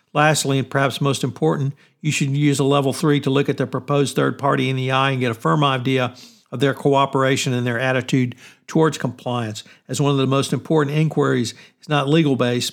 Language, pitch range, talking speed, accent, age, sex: English, 130-150 Hz, 205 wpm, American, 60-79, male